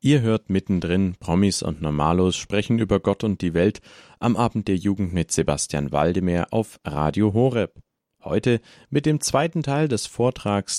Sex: male